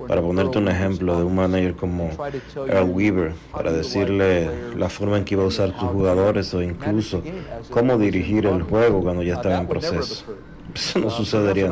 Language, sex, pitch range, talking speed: Spanish, male, 95-110 Hz, 180 wpm